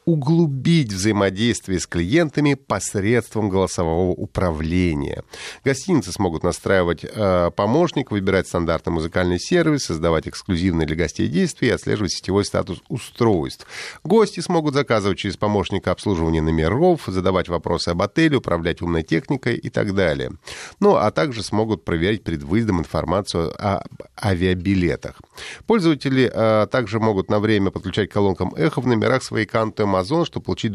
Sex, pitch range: male, 90-120 Hz